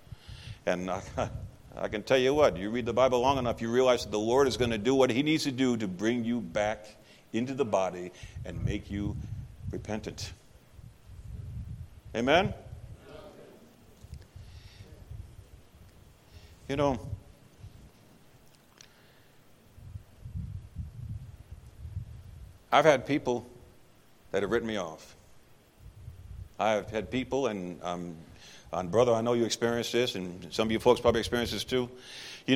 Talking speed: 130 wpm